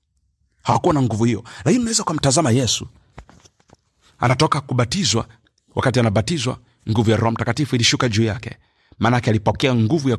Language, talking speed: Swahili, 135 wpm